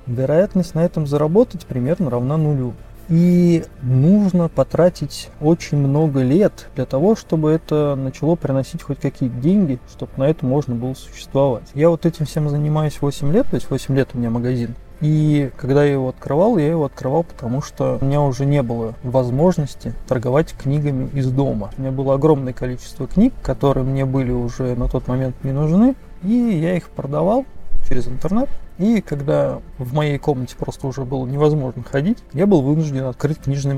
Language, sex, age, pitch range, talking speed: Russian, male, 20-39, 130-165 Hz, 175 wpm